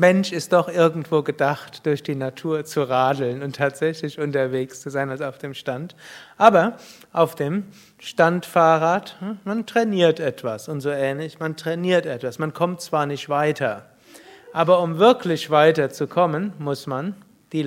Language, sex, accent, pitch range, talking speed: German, male, German, 140-170 Hz, 150 wpm